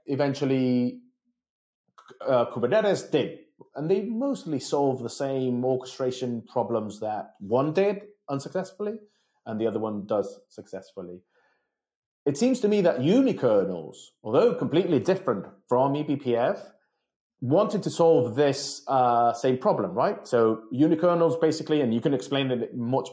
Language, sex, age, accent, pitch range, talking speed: English, male, 30-49, British, 125-160 Hz, 130 wpm